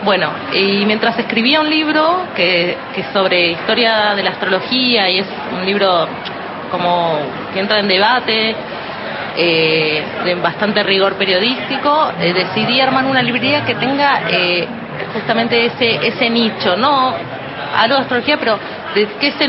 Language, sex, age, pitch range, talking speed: Spanish, female, 30-49, 180-230 Hz, 150 wpm